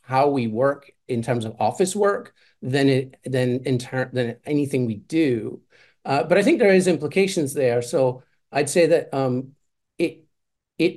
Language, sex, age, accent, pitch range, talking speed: English, male, 40-59, American, 120-150 Hz, 175 wpm